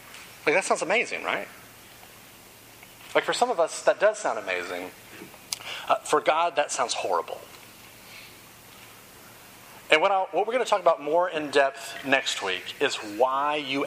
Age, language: 30-49, English